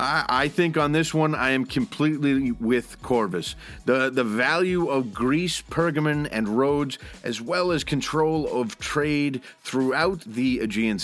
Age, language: 30-49, English